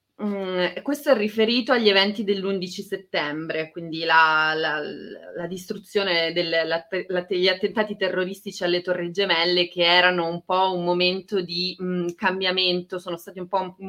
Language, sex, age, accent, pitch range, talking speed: Italian, female, 30-49, native, 170-240 Hz, 160 wpm